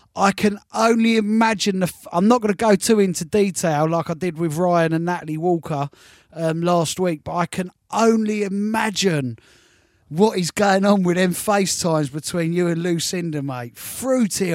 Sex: male